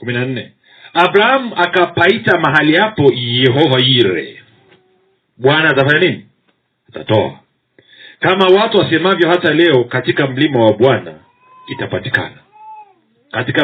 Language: Swahili